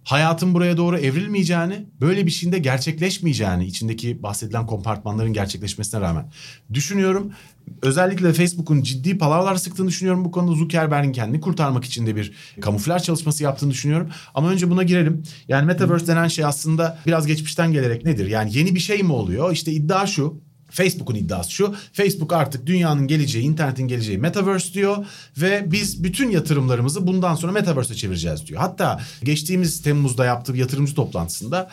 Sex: male